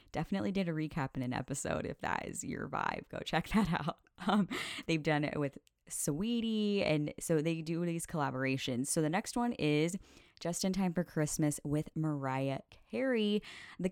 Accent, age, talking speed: American, 10-29, 180 wpm